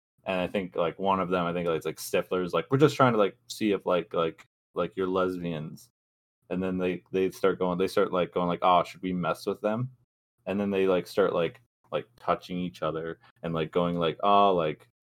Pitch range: 90-125 Hz